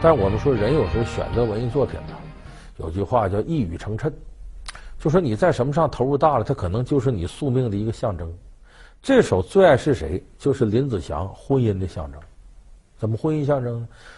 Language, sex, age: Chinese, male, 50-69